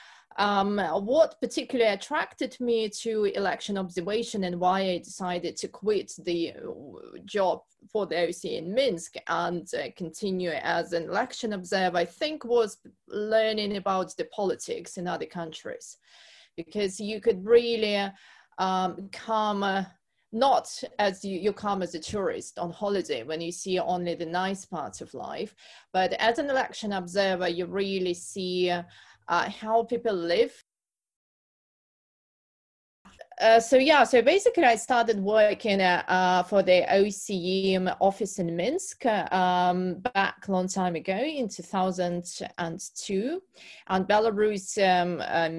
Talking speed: 140 wpm